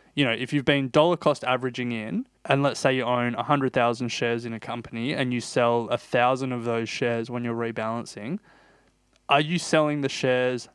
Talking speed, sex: 200 wpm, male